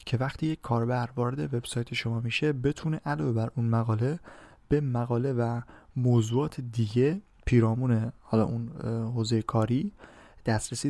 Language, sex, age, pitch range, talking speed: Persian, male, 20-39, 115-130 Hz, 130 wpm